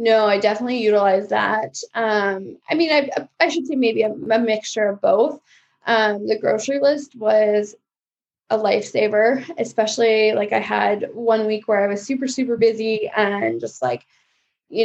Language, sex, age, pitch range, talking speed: English, female, 10-29, 210-250 Hz, 165 wpm